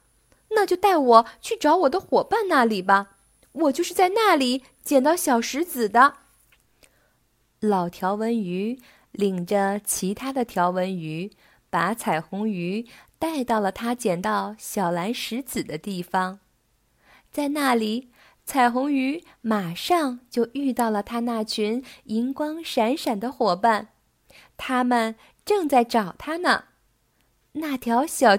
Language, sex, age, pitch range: Chinese, female, 20-39, 200-270 Hz